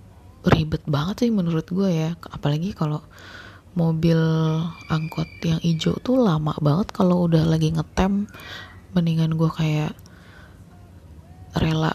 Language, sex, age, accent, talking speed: Indonesian, female, 20-39, native, 115 wpm